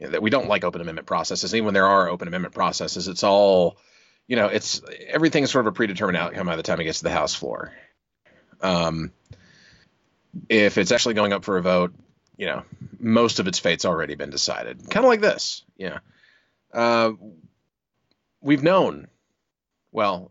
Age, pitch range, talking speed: 30-49, 95-120 Hz, 185 wpm